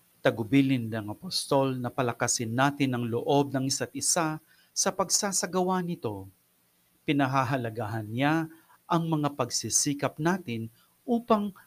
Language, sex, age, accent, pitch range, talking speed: English, male, 40-59, Filipino, 120-170 Hz, 110 wpm